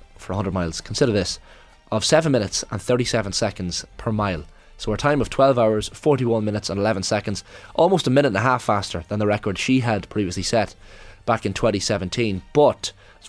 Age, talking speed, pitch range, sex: 20-39, 195 wpm, 100-120 Hz, male